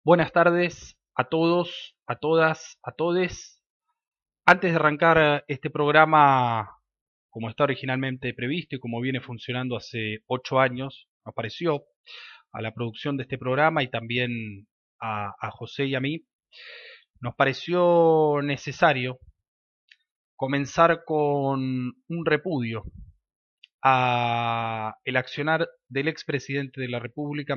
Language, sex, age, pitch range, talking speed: Spanish, male, 20-39, 125-155 Hz, 120 wpm